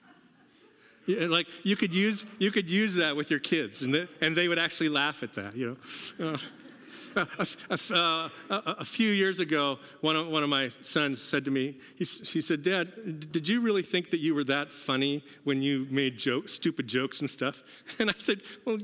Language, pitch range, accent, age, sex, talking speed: English, 155-210 Hz, American, 50-69, male, 210 wpm